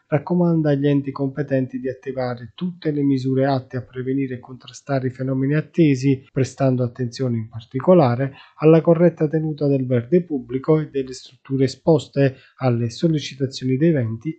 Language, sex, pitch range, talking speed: Italian, male, 125-140 Hz, 145 wpm